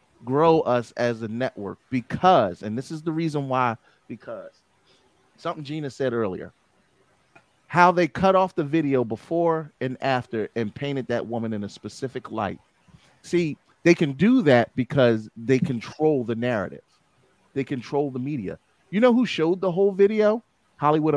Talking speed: 160 wpm